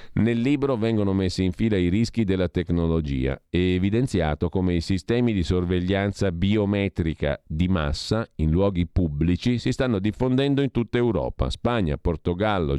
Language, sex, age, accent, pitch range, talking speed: Italian, male, 50-69, native, 85-105 Hz, 145 wpm